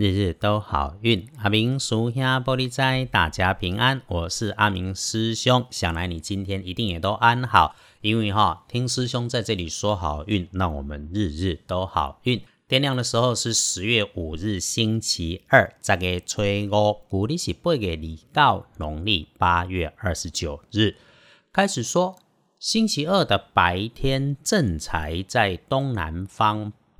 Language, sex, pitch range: Chinese, male, 90-120 Hz